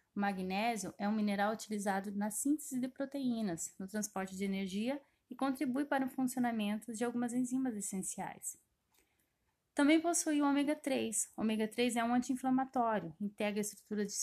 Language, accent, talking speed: Portuguese, Brazilian, 160 wpm